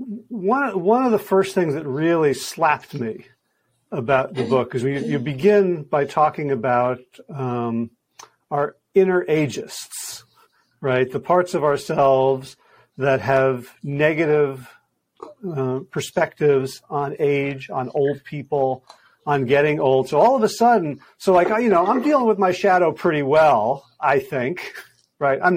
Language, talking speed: English, 145 wpm